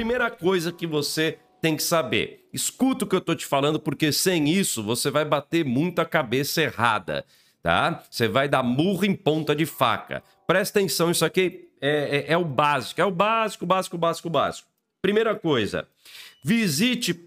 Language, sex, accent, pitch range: Portuguese, male, Brazilian, 150-185 Hz